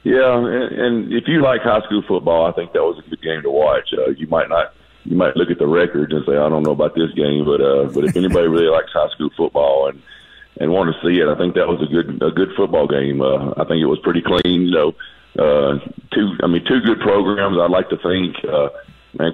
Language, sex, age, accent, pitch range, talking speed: English, male, 40-59, American, 80-100 Hz, 260 wpm